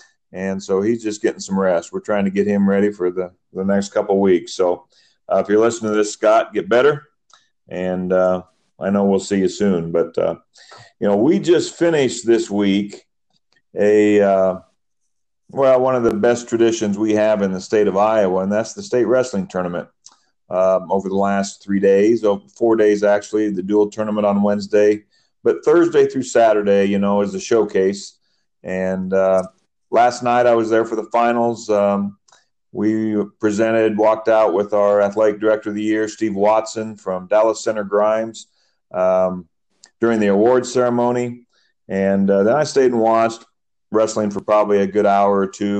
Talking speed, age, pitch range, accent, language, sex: 180 wpm, 40-59, 100-115 Hz, American, English, male